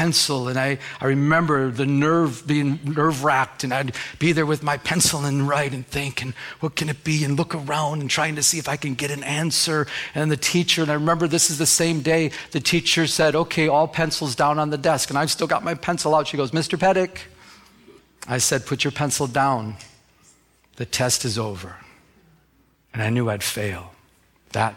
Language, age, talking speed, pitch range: English, 50-69, 210 wpm, 125-155 Hz